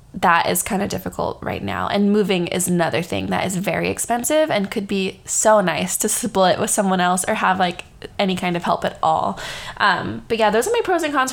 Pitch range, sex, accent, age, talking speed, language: 180-215 Hz, female, American, 20-39, 235 wpm, English